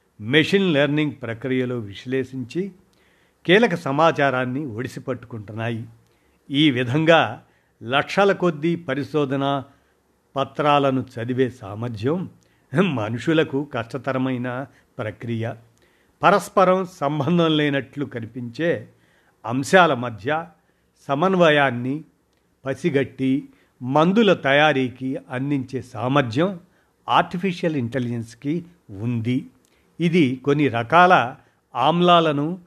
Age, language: 50-69, Telugu